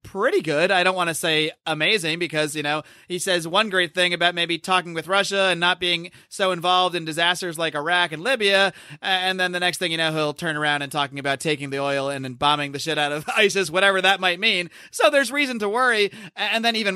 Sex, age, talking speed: male, 30-49, 240 wpm